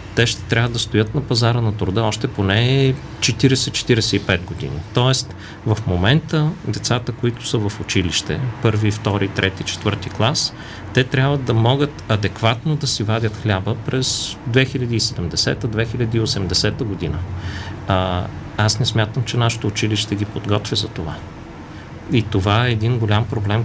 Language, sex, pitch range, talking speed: Bulgarian, male, 100-120 Hz, 140 wpm